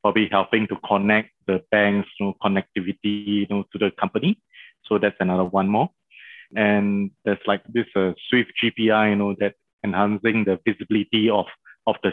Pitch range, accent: 100-110 Hz, Malaysian